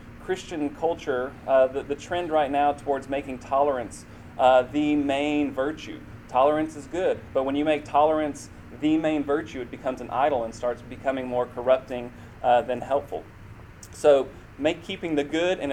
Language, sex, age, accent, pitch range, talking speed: English, male, 30-49, American, 125-155 Hz, 170 wpm